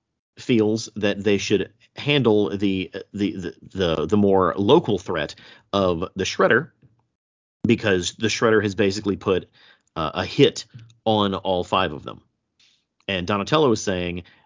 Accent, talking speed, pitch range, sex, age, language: American, 140 wpm, 95-115 Hz, male, 40-59, English